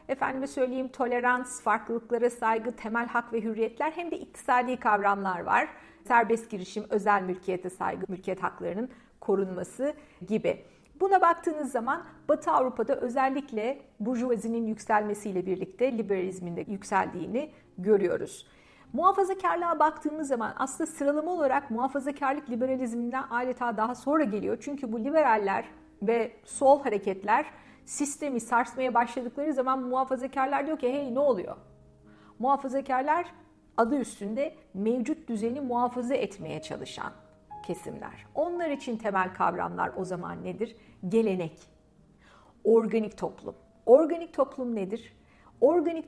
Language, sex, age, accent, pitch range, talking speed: Turkish, female, 50-69, native, 220-280 Hz, 110 wpm